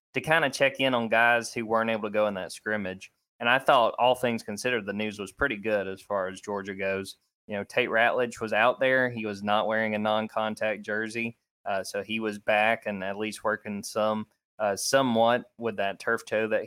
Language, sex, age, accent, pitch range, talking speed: English, male, 20-39, American, 100-115 Hz, 225 wpm